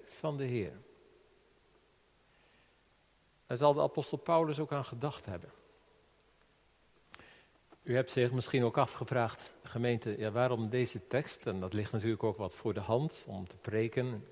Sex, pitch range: male, 110-145 Hz